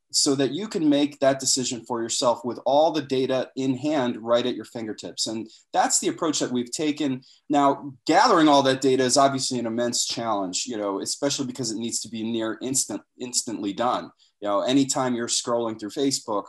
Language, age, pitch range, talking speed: English, 30-49, 115-140 Hz, 200 wpm